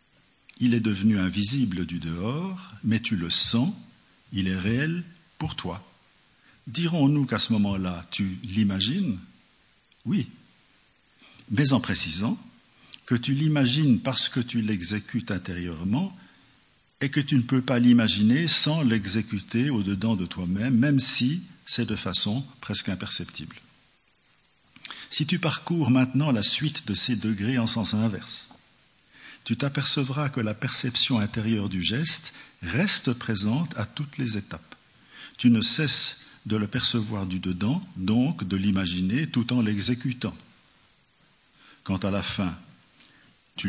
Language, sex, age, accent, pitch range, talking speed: French, male, 50-69, French, 100-135 Hz, 135 wpm